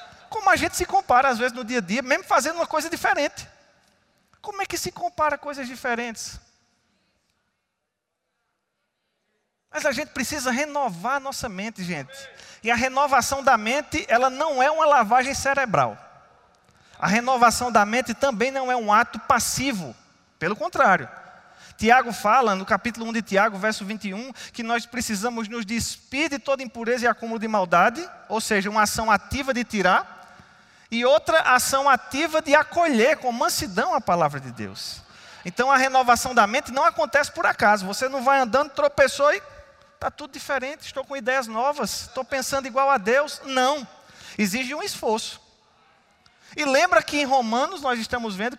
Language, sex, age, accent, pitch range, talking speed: Portuguese, male, 20-39, Brazilian, 230-290 Hz, 165 wpm